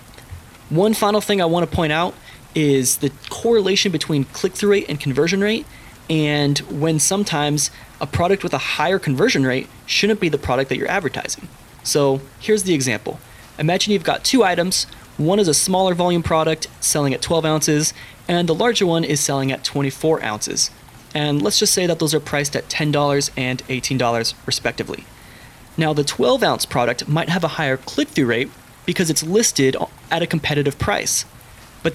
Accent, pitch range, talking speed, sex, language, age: American, 130-180 Hz, 175 wpm, male, English, 20-39